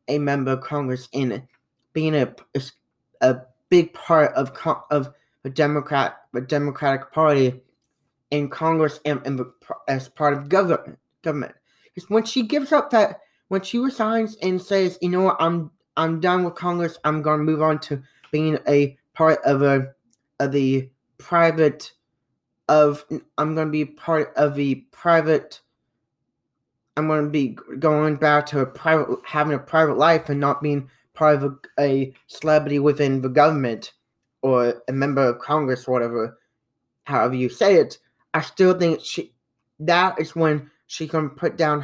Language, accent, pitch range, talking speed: English, American, 135-155 Hz, 160 wpm